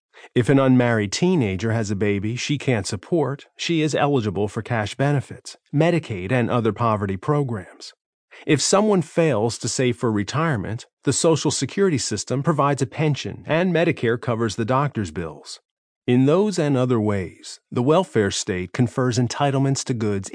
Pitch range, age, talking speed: 115-155 Hz, 40-59, 155 wpm